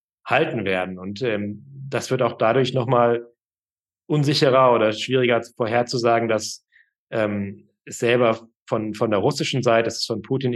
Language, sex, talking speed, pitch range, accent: German, male, 155 wpm, 105-125 Hz, German